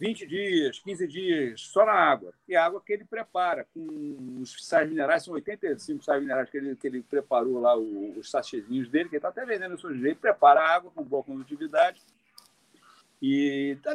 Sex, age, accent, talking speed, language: male, 50-69, Brazilian, 200 wpm, Portuguese